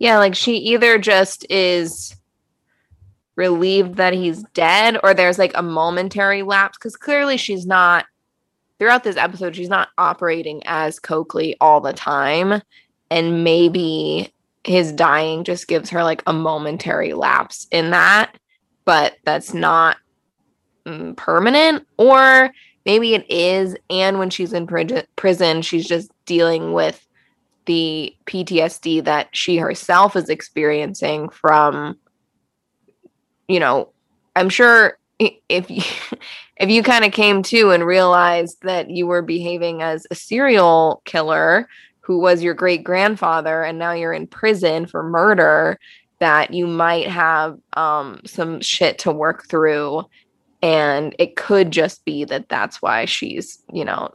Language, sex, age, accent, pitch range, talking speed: English, female, 20-39, American, 160-195 Hz, 135 wpm